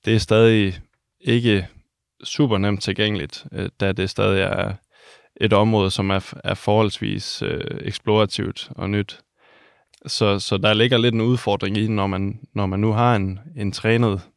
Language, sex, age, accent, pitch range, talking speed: Danish, male, 20-39, native, 100-115 Hz, 150 wpm